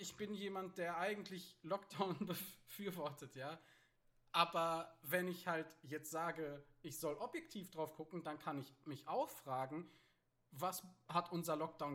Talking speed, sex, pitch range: 145 wpm, male, 140-175 Hz